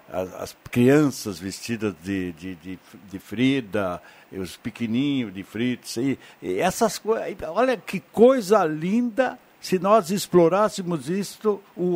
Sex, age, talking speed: male, 60-79, 120 wpm